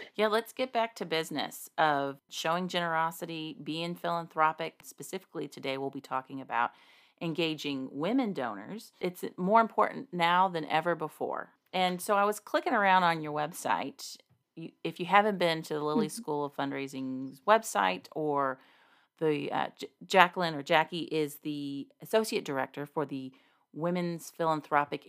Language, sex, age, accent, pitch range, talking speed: English, female, 40-59, American, 140-195 Hz, 150 wpm